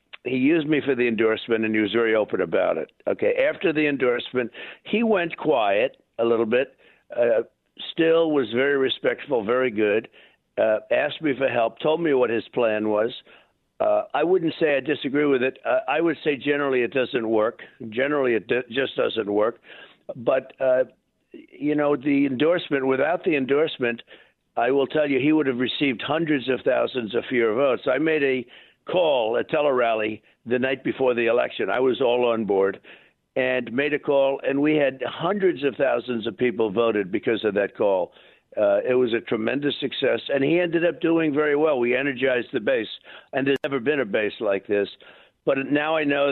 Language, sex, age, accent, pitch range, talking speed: English, male, 60-79, American, 125-150 Hz, 190 wpm